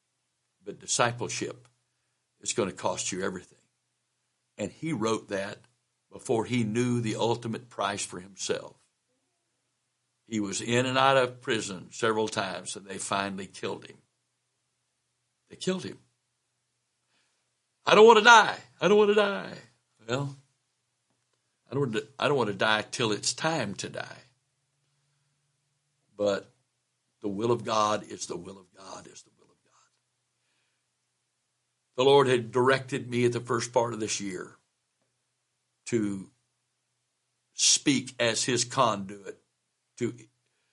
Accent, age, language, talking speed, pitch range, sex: American, 60-79, English, 130 wpm, 110-135 Hz, male